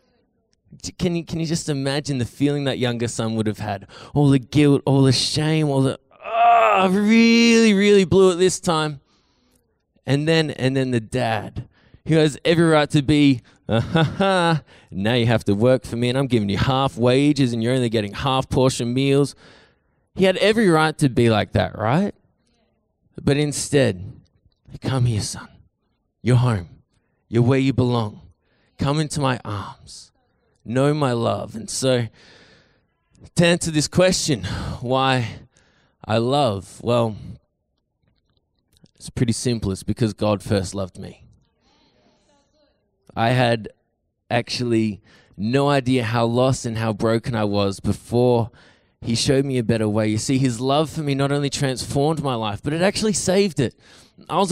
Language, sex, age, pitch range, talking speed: English, male, 20-39, 115-155 Hz, 160 wpm